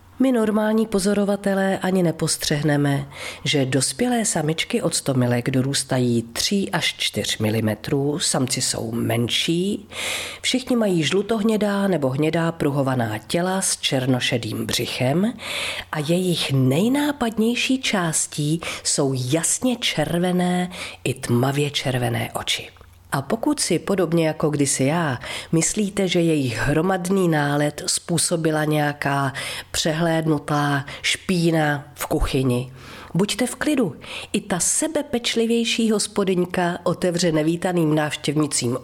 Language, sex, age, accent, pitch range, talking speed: Czech, female, 40-59, native, 135-195 Hz, 105 wpm